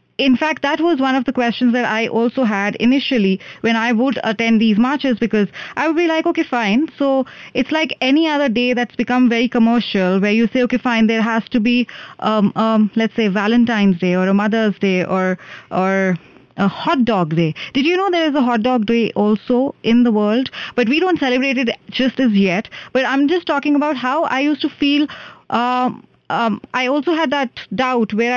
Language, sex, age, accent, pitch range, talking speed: English, female, 20-39, Indian, 225-275 Hz, 210 wpm